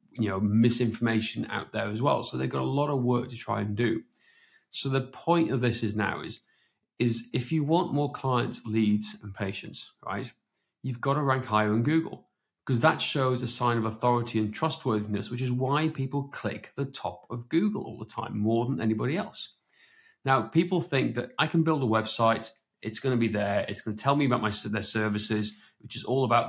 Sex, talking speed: male, 215 wpm